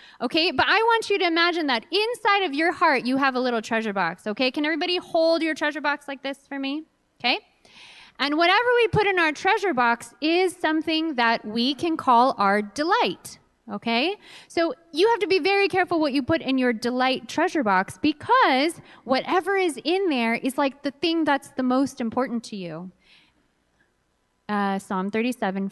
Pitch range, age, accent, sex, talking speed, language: 235-340 Hz, 20-39, American, female, 185 wpm, English